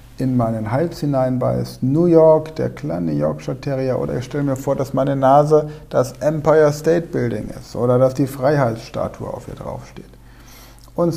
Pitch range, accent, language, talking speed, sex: 110-150 Hz, German, German, 170 wpm, male